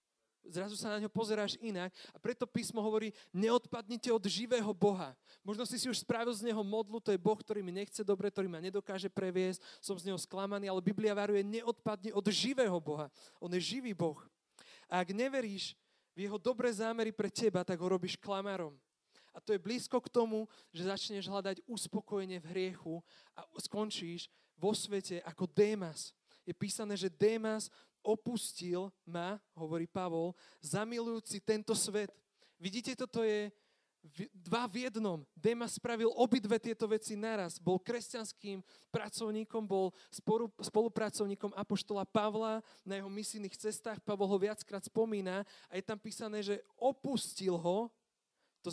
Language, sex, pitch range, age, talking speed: Slovak, male, 185-220 Hz, 30-49, 155 wpm